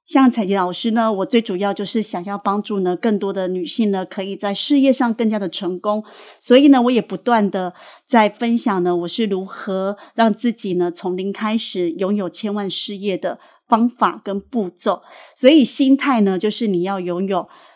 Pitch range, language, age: 195-245 Hz, Chinese, 30-49